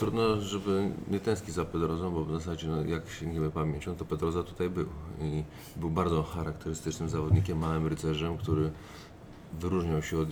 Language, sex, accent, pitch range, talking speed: Polish, male, native, 80-90 Hz, 175 wpm